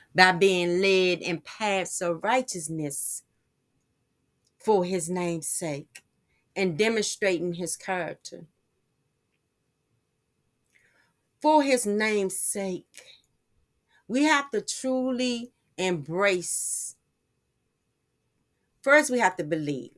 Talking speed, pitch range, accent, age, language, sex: 85 wpm, 170-220 Hz, American, 40-59, English, female